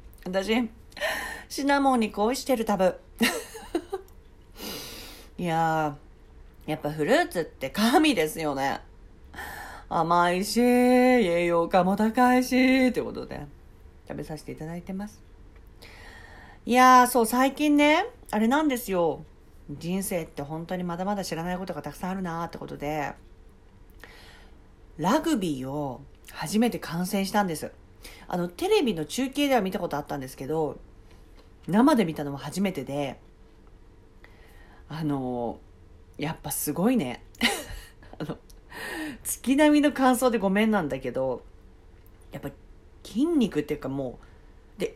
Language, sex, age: Japanese, female, 40-59